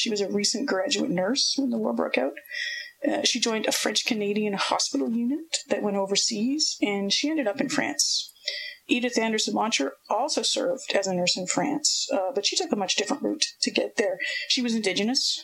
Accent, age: American, 40-59